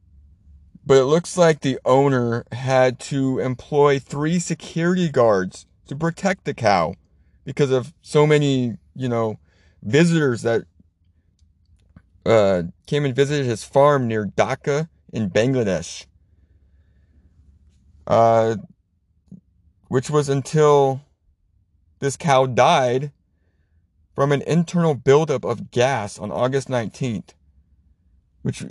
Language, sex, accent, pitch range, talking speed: English, male, American, 85-135 Hz, 105 wpm